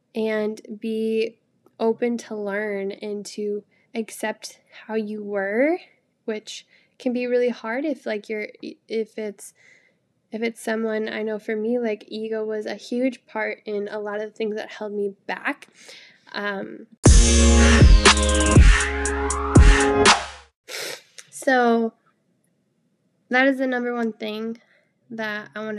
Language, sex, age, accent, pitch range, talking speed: English, female, 10-29, American, 205-240 Hz, 125 wpm